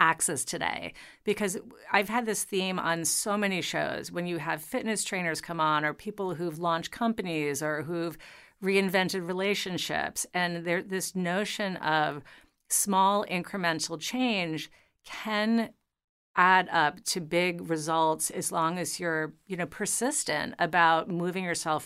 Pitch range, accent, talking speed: 160-200 Hz, American, 140 wpm